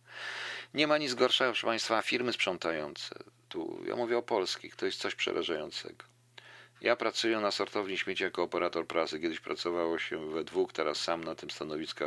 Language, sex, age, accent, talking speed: Polish, male, 50-69, native, 175 wpm